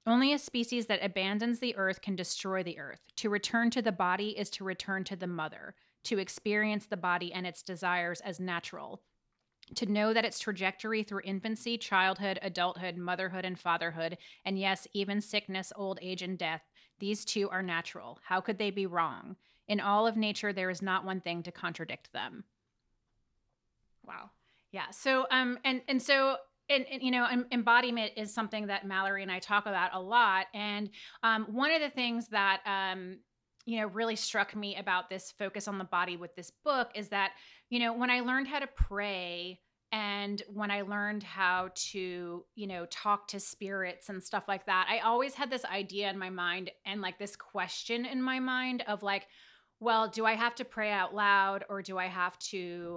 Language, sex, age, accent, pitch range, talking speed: English, female, 30-49, American, 185-225 Hz, 195 wpm